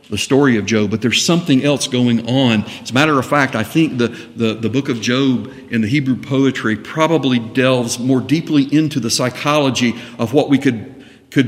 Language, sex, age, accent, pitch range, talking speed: English, male, 50-69, American, 125-170 Hz, 205 wpm